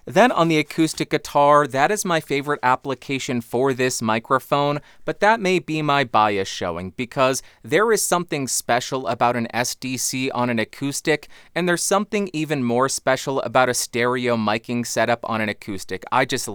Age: 30-49